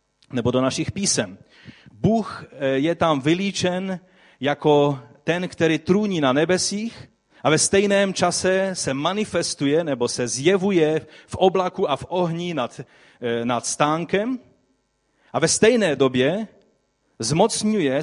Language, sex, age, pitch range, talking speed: Czech, male, 40-59, 125-175 Hz, 120 wpm